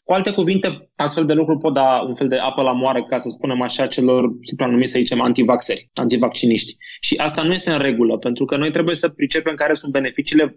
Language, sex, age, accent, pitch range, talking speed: Romanian, male, 20-39, native, 135-160 Hz, 220 wpm